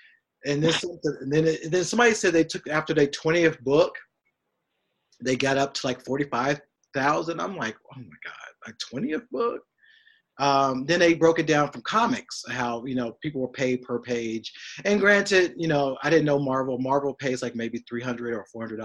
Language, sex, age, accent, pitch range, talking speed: English, male, 30-49, American, 125-160 Hz, 185 wpm